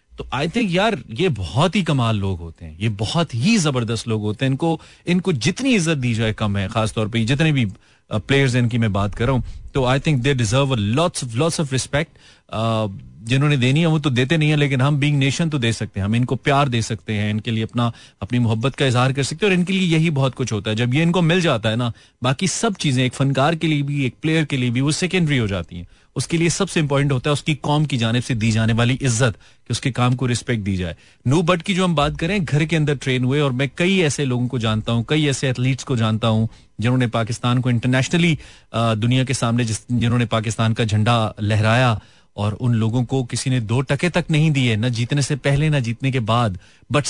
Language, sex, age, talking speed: Hindi, male, 30-49, 215 wpm